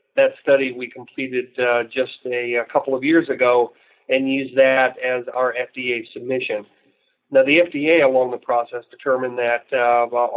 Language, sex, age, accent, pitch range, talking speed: English, male, 40-59, American, 120-135 Hz, 160 wpm